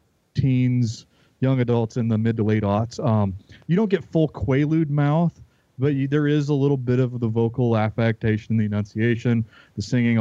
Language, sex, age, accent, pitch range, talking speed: English, male, 30-49, American, 105-125 Hz, 175 wpm